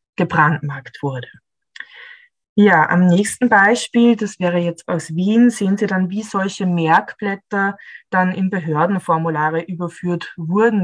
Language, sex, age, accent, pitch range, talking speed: German, female, 20-39, German, 165-205 Hz, 120 wpm